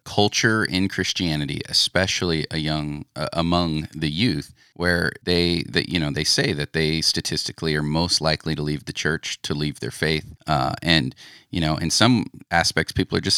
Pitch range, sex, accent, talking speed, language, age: 80-95 Hz, male, American, 185 wpm, English, 30-49